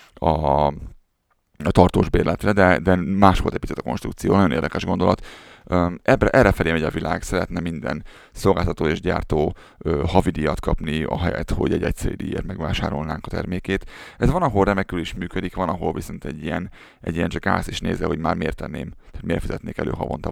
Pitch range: 80-95 Hz